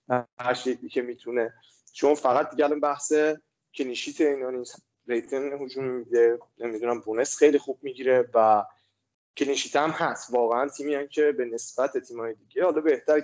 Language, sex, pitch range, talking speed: Persian, male, 130-180 Hz, 135 wpm